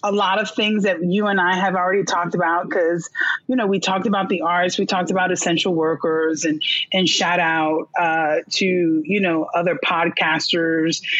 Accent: American